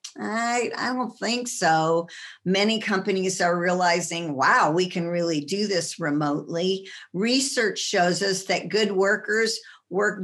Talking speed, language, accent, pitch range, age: 135 wpm, English, American, 175-245 Hz, 50-69